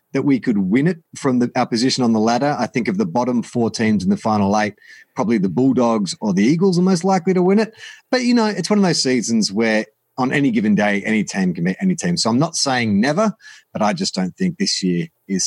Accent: Australian